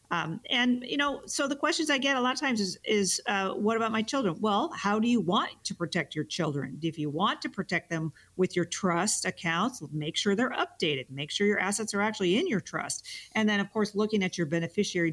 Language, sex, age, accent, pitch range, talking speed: English, female, 50-69, American, 165-210 Hz, 240 wpm